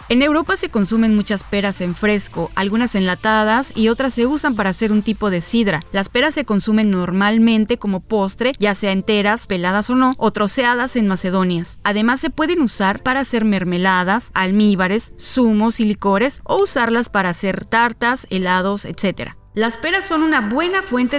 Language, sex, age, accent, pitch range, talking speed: English, female, 20-39, Mexican, 195-250 Hz, 175 wpm